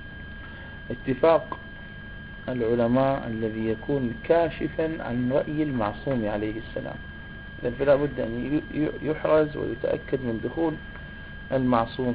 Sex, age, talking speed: male, 40-59, 95 wpm